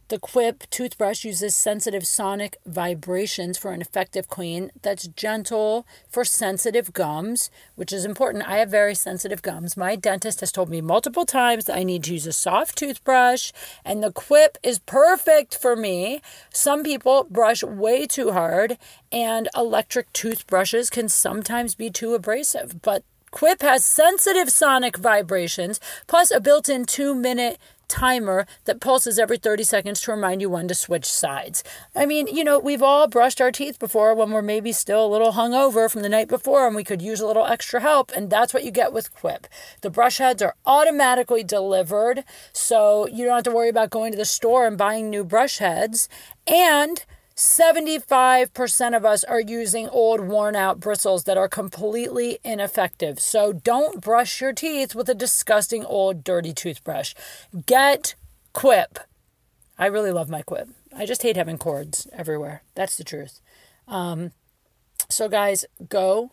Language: English